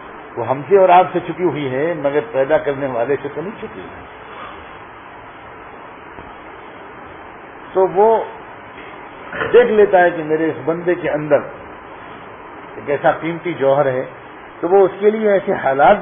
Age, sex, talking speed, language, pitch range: 50-69, male, 155 wpm, Urdu, 145-195 Hz